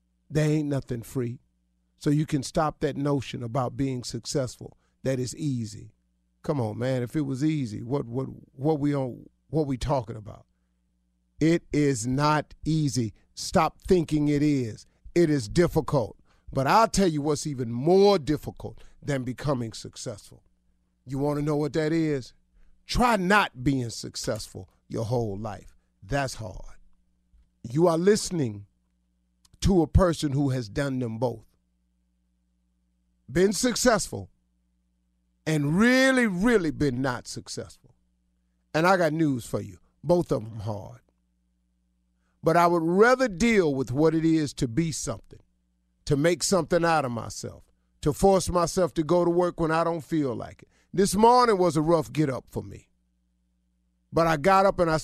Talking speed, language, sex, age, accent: 160 wpm, English, male, 40-59, American